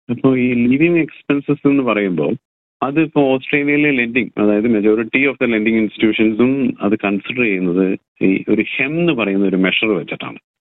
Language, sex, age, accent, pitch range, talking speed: Malayalam, male, 40-59, native, 100-125 Hz, 145 wpm